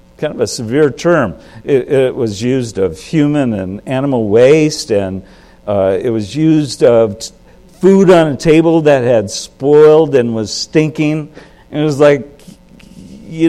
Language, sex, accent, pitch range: English, male, American, 120-175 Hz